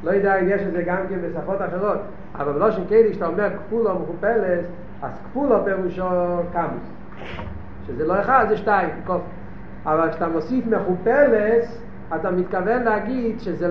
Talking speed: 145 wpm